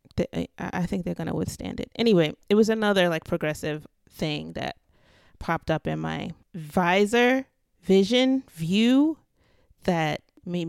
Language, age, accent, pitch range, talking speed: English, 30-49, American, 155-195 Hz, 135 wpm